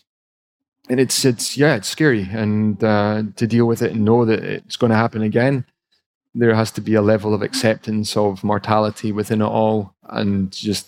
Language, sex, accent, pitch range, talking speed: English, male, British, 110-120 Hz, 195 wpm